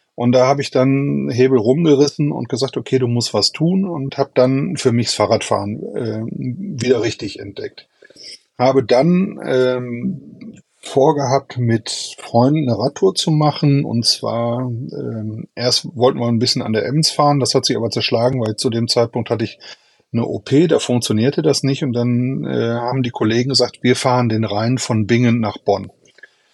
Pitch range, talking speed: 115-140 Hz, 180 wpm